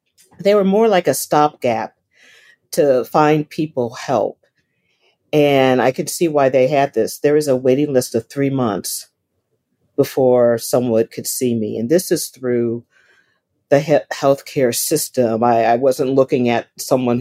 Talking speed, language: 155 wpm, English